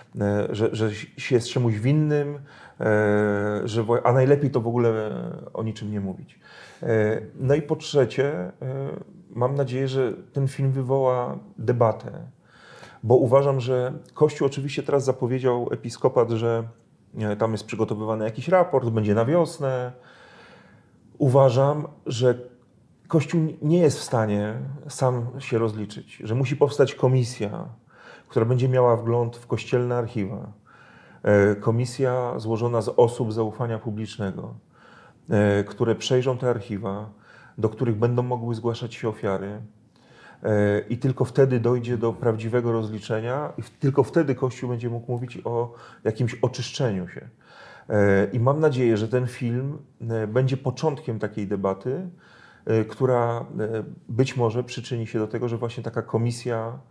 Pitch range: 110-135 Hz